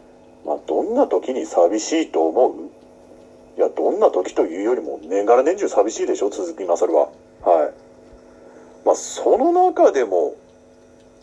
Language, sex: Japanese, male